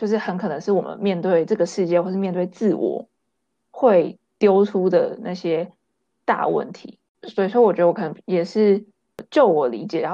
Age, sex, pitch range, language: 20-39, female, 180-220 Hz, Chinese